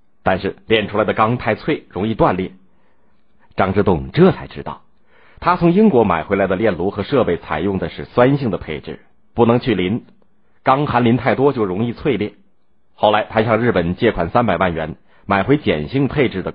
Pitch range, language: 85-120 Hz, Chinese